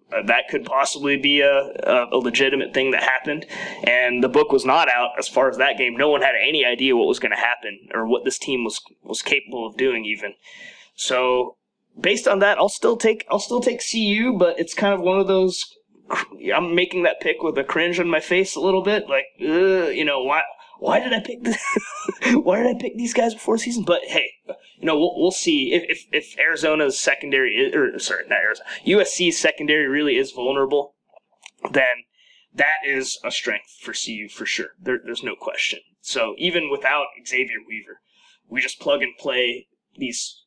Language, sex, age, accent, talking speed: English, male, 20-39, American, 205 wpm